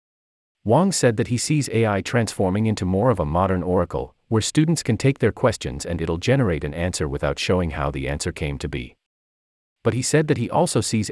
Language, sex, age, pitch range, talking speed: English, male, 40-59, 75-120 Hz, 210 wpm